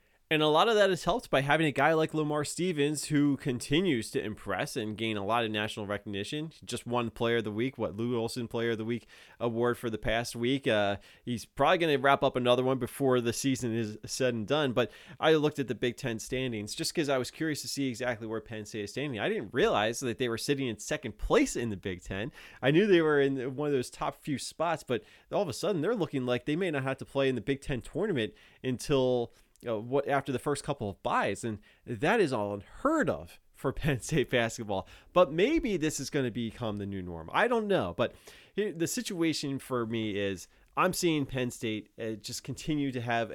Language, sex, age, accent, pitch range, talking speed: English, male, 20-39, American, 110-145 Hz, 235 wpm